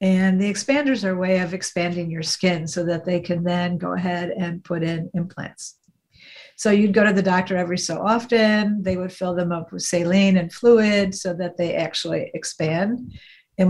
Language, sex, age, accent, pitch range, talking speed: English, female, 50-69, American, 175-195 Hz, 195 wpm